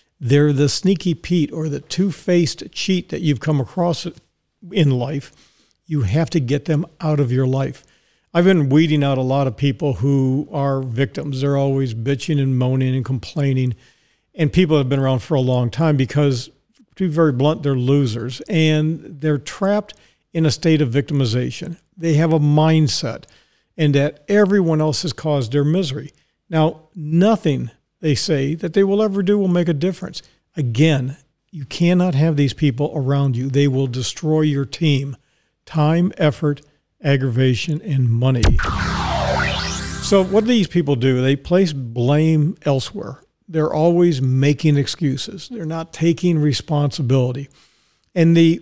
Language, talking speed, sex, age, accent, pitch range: English, 160 wpm, male, 50-69, American, 135-165 Hz